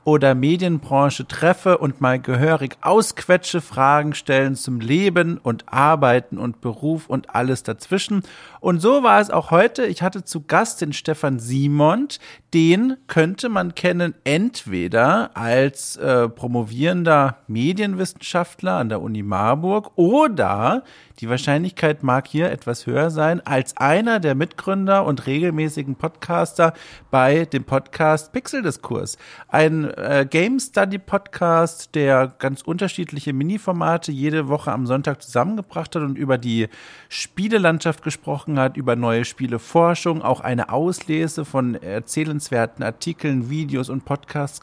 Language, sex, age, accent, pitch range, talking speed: German, male, 50-69, German, 130-175 Hz, 130 wpm